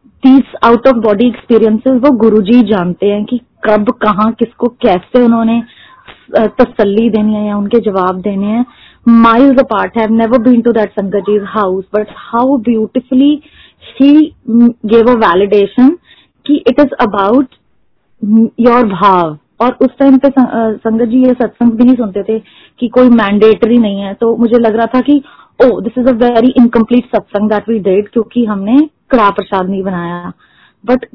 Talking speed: 145 wpm